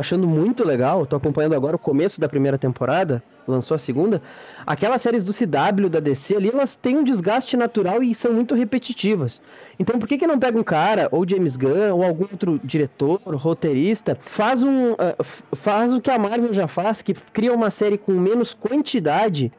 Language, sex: Portuguese, male